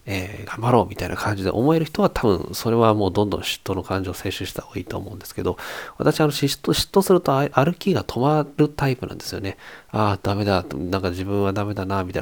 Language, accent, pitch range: Japanese, native, 95-130 Hz